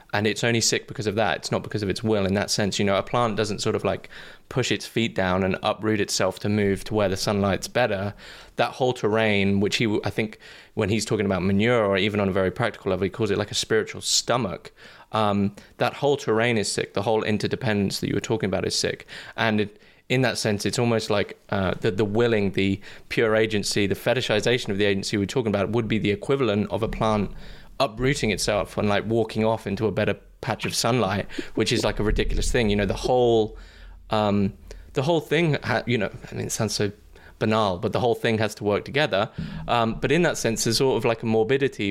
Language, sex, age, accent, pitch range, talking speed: English, male, 20-39, British, 100-115 Hz, 235 wpm